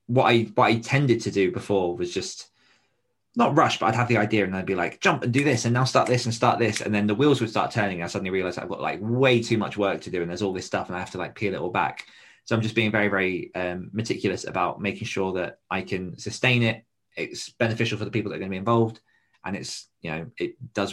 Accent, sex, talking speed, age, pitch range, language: British, male, 285 wpm, 20-39, 95-120 Hz, English